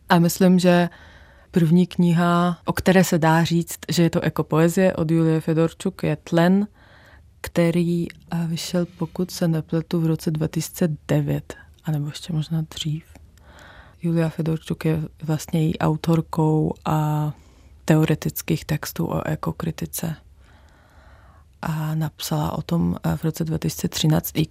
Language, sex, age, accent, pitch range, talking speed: Czech, female, 20-39, native, 155-170 Hz, 120 wpm